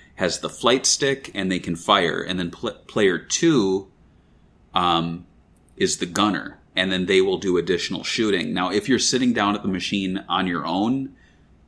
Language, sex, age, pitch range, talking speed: English, male, 30-49, 85-105 Hz, 180 wpm